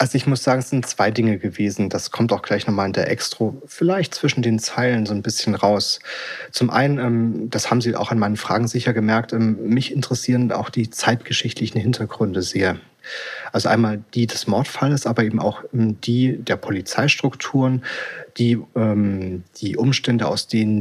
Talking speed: 170 wpm